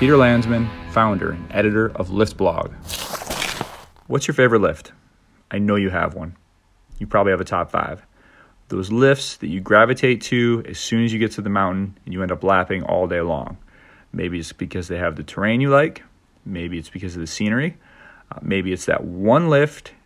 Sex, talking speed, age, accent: male, 195 wpm, 30-49, American